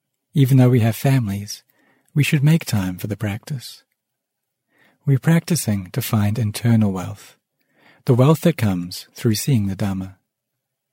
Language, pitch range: English, 105-140 Hz